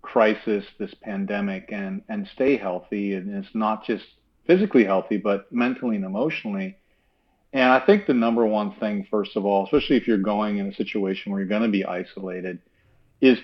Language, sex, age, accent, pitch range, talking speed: English, male, 40-59, American, 100-120 Hz, 185 wpm